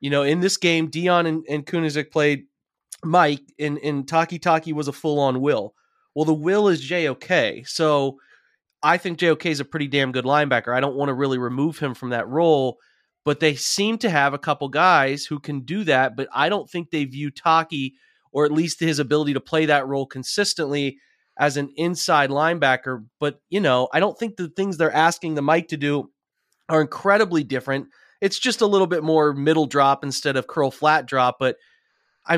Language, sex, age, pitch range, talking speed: English, male, 30-49, 140-170 Hz, 200 wpm